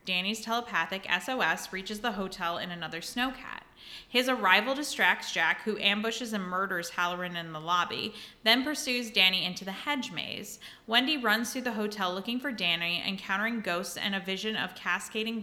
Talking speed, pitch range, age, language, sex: 165 wpm, 175-215 Hz, 20-39, English, female